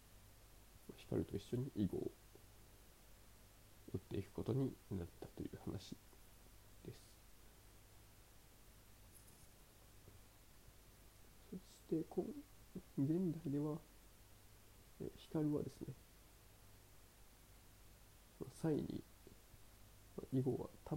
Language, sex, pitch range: Japanese, male, 100-115 Hz